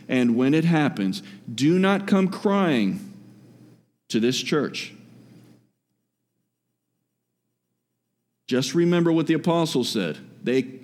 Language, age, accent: English, 40-59, American